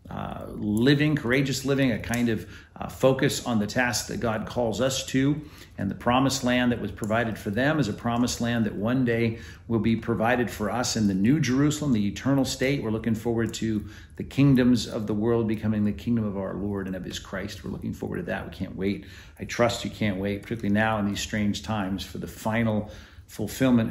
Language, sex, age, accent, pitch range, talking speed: English, male, 50-69, American, 105-125 Hz, 220 wpm